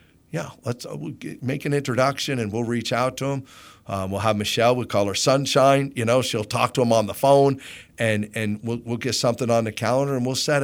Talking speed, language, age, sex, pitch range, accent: 245 wpm, English, 50-69, male, 105-125 Hz, American